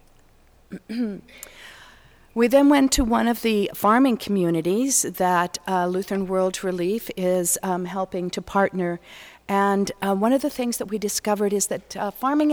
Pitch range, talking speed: 185-220 Hz, 155 wpm